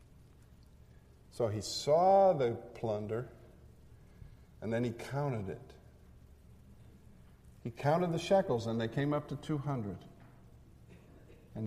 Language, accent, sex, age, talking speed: English, American, male, 50-69, 110 wpm